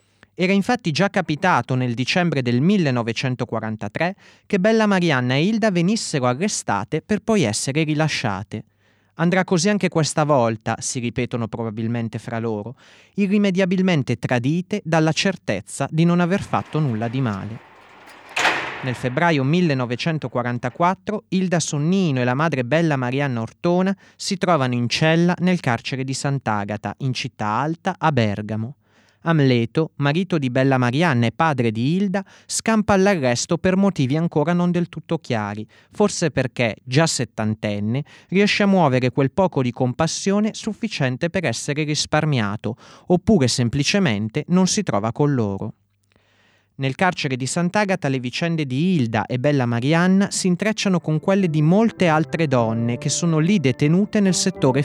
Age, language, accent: 30-49, Italian, native